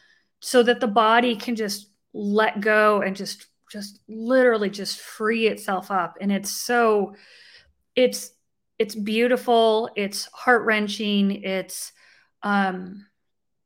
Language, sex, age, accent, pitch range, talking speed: English, female, 30-49, American, 205-235 Hz, 120 wpm